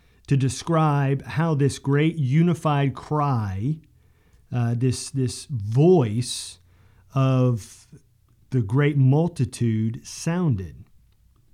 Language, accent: English, American